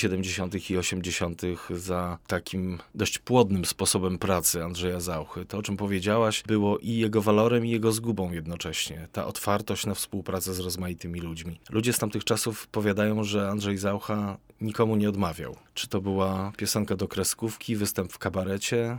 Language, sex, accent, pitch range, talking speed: Polish, male, native, 95-115 Hz, 160 wpm